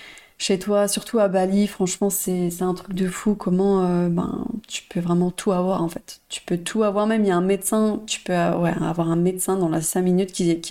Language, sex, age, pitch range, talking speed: French, female, 30-49, 175-200 Hz, 245 wpm